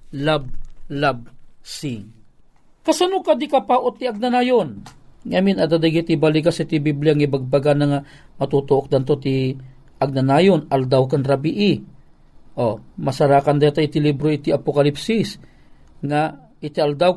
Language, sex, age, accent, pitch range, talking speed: Filipino, male, 40-59, native, 155-215 Hz, 135 wpm